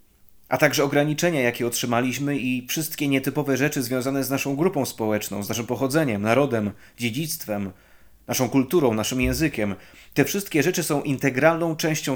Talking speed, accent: 145 wpm, native